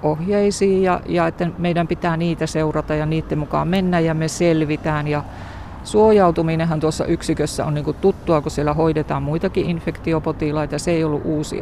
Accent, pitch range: native, 140-165 Hz